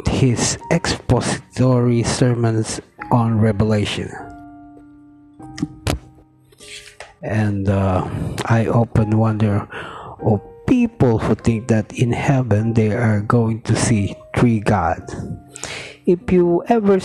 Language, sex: Filipino, male